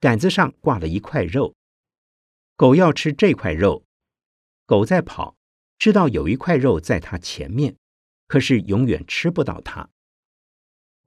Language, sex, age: Chinese, male, 50-69